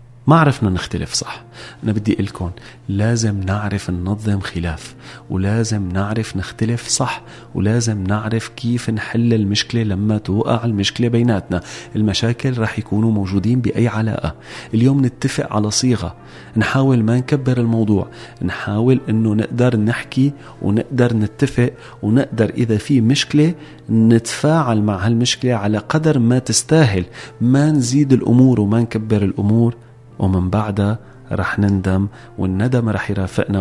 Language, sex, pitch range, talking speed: Arabic, male, 100-120 Hz, 125 wpm